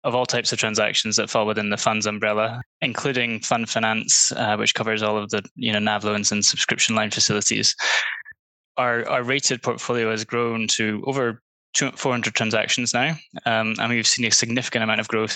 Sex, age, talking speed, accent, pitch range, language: male, 10-29, 190 wpm, British, 110-120 Hz, English